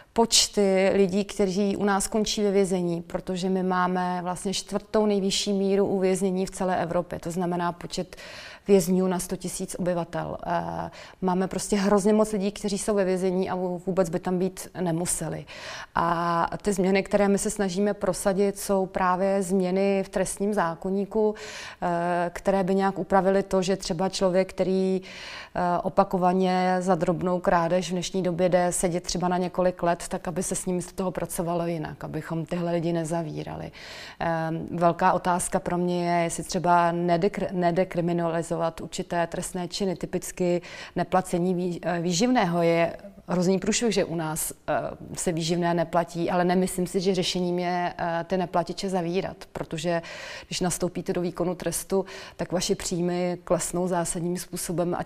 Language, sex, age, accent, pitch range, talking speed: Czech, female, 30-49, native, 175-195 Hz, 150 wpm